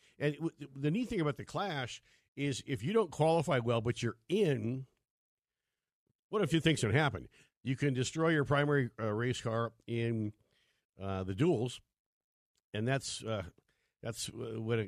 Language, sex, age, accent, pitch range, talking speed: English, male, 50-69, American, 110-150 Hz, 155 wpm